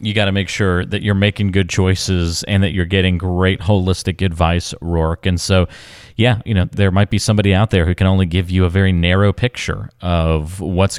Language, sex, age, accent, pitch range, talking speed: English, male, 30-49, American, 90-110 Hz, 220 wpm